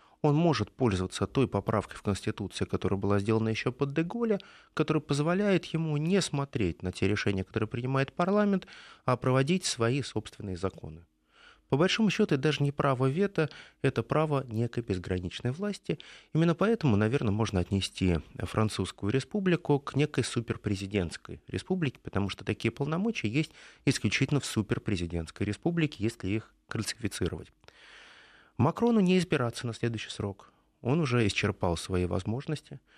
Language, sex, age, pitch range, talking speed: Russian, male, 30-49, 100-150 Hz, 135 wpm